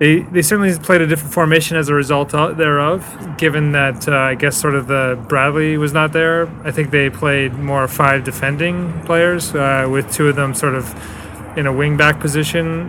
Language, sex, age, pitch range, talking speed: English, male, 30-49, 135-155 Hz, 200 wpm